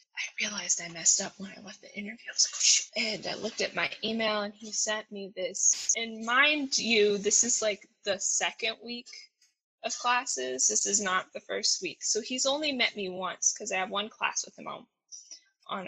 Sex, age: female, 10-29